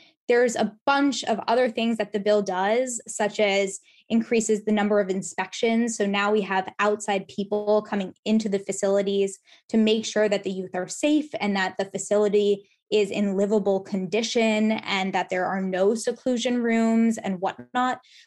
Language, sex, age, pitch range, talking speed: English, female, 10-29, 195-225 Hz, 170 wpm